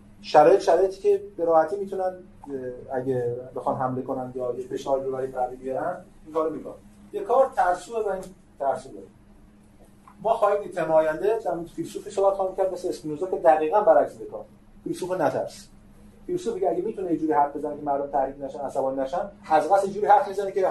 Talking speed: 155 wpm